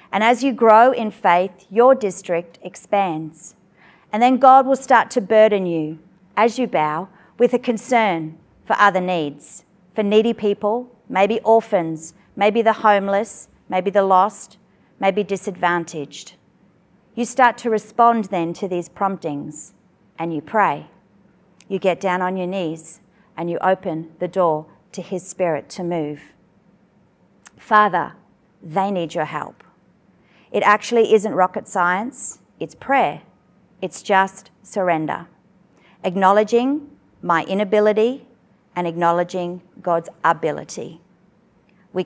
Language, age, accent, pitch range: English, 40-59, Australian, 175-215 Hz